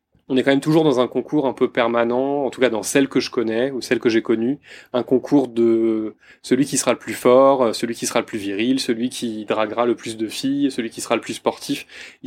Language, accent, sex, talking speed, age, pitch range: French, French, male, 260 wpm, 20-39, 115-140 Hz